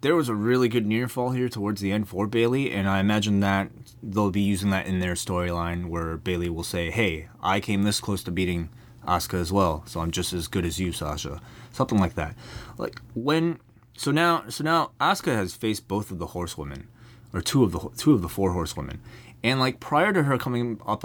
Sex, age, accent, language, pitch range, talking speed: male, 20-39, American, English, 90-120 Hz, 220 wpm